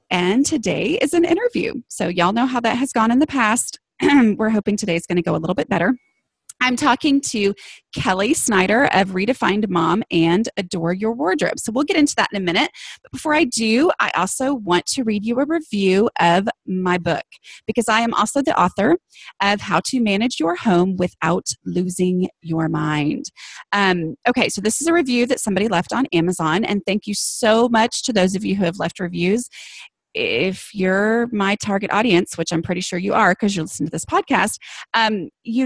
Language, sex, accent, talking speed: English, female, American, 200 wpm